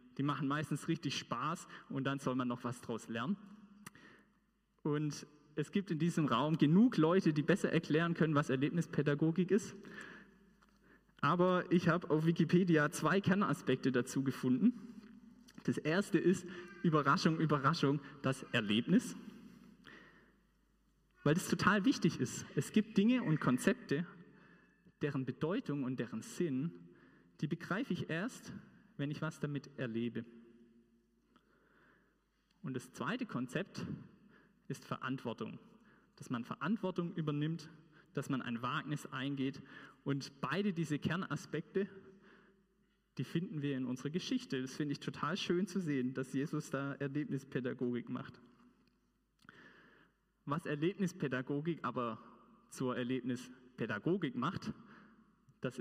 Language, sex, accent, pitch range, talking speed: German, male, German, 130-195 Hz, 120 wpm